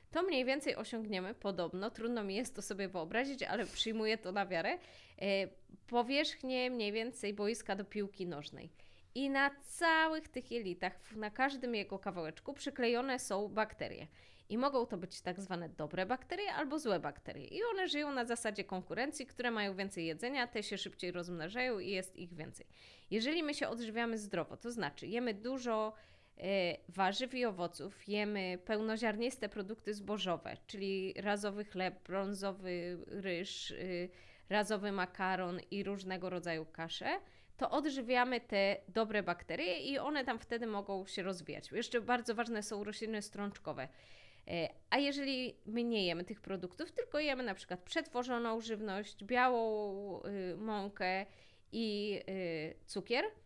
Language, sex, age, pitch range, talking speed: Polish, female, 20-39, 185-245 Hz, 140 wpm